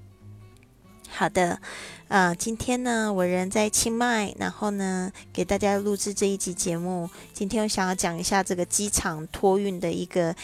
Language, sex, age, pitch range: Chinese, female, 20-39, 175-220 Hz